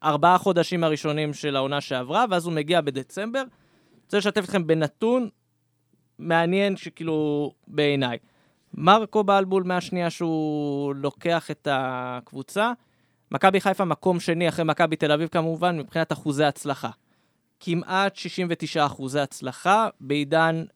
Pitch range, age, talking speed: 150-190 Hz, 20-39, 120 wpm